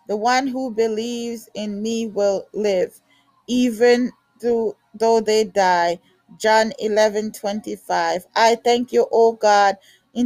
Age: 20-39